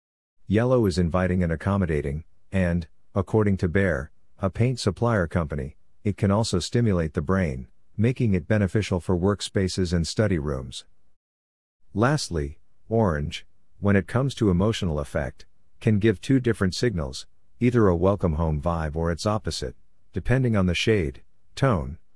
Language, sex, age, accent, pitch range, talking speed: English, male, 50-69, American, 85-105 Hz, 145 wpm